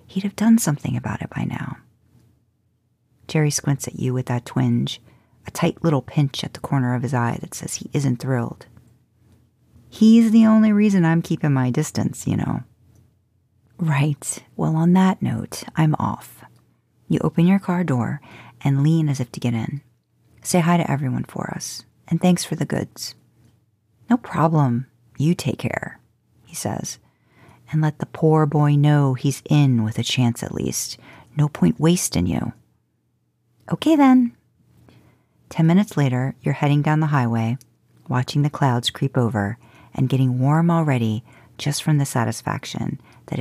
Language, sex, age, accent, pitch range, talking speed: English, female, 40-59, American, 120-160 Hz, 165 wpm